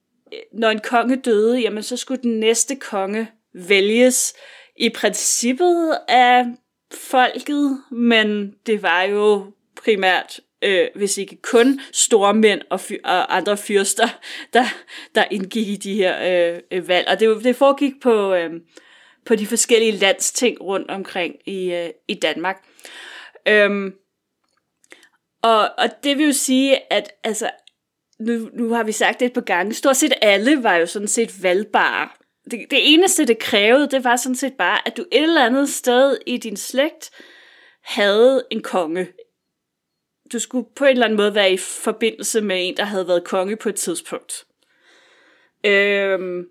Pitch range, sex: 200-250 Hz, female